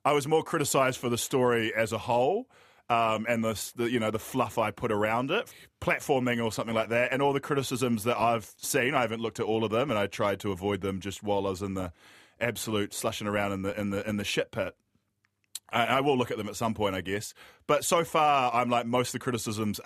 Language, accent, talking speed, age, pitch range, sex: English, Australian, 255 wpm, 20-39, 105-125 Hz, male